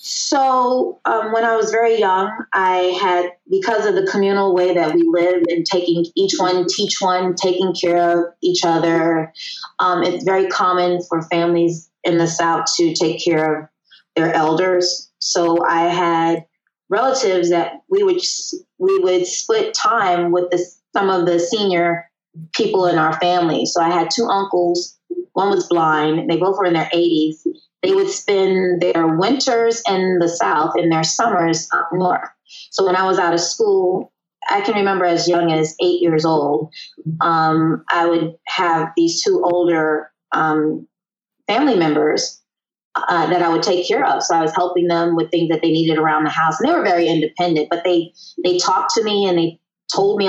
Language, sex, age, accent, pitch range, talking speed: English, female, 20-39, American, 165-195 Hz, 185 wpm